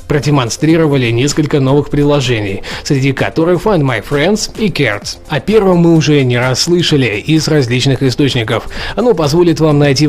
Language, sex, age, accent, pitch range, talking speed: Russian, male, 20-39, native, 135-175 Hz, 150 wpm